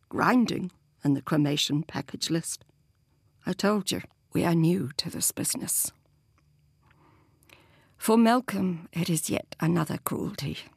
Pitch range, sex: 155-205 Hz, female